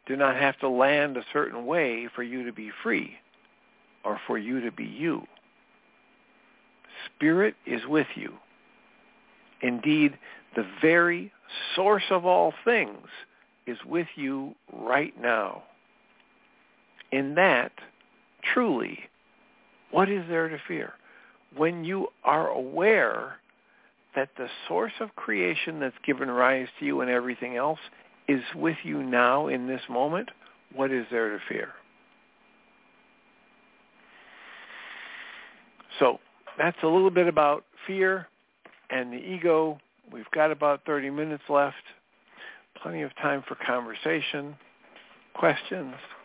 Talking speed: 120 wpm